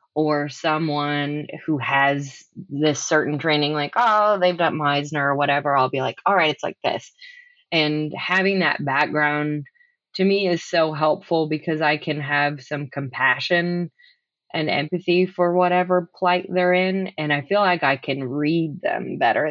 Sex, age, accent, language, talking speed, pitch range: female, 20-39, American, English, 165 wpm, 150-175 Hz